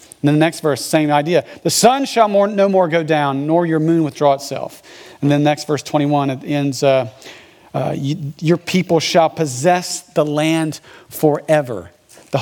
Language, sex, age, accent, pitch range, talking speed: English, male, 40-59, American, 165-235 Hz, 185 wpm